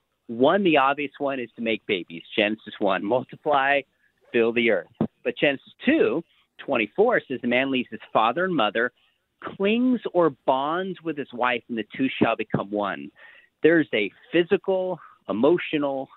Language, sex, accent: English, male, American